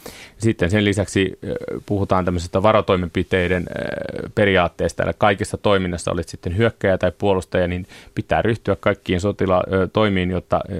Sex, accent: male, native